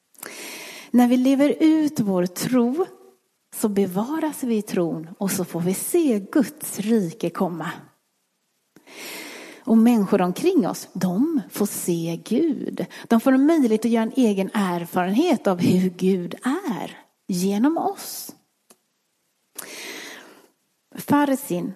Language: Swedish